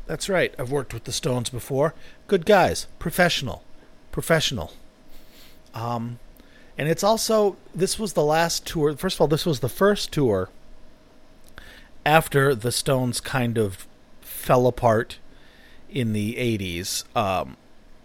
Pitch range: 115-145 Hz